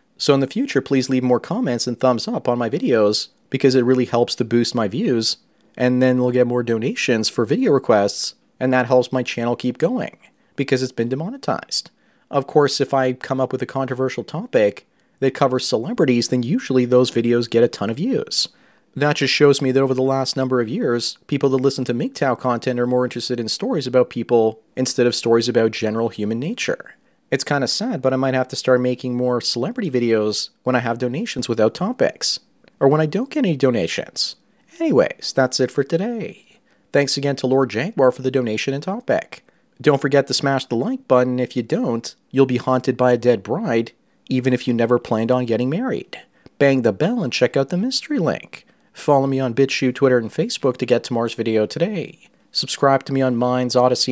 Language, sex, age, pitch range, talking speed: English, male, 30-49, 120-135 Hz, 210 wpm